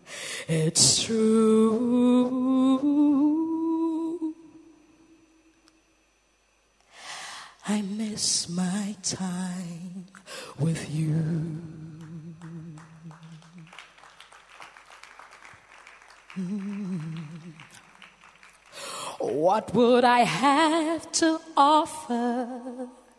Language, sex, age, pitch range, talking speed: English, female, 30-49, 175-260 Hz, 40 wpm